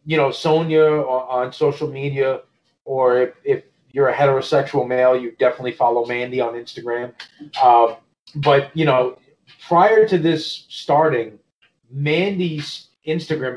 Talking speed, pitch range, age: 130 wpm, 135-165 Hz, 30-49